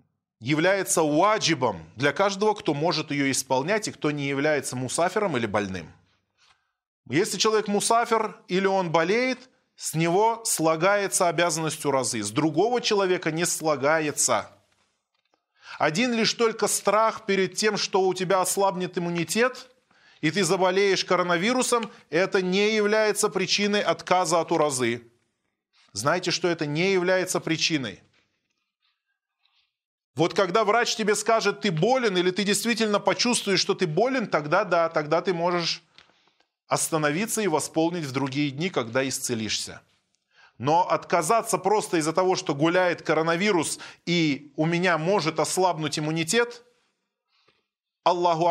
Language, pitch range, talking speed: Russian, 155-210 Hz, 125 wpm